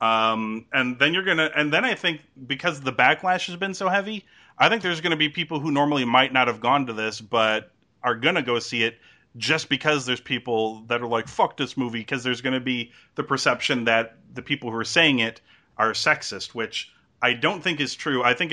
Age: 30-49